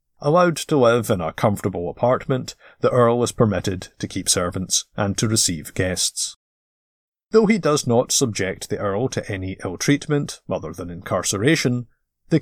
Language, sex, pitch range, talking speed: English, male, 95-130 Hz, 155 wpm